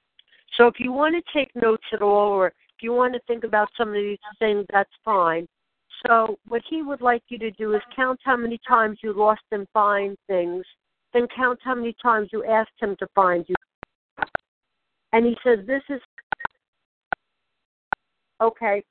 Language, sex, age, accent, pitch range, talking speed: English, female, 60-79, American, 210-255 Hz, 180 wpm